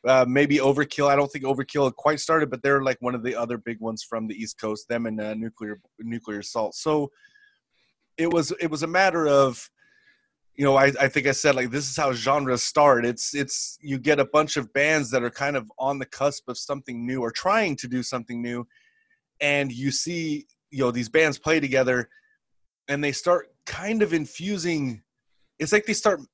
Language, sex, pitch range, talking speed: English, male, 125-160 Hz, 210 wpm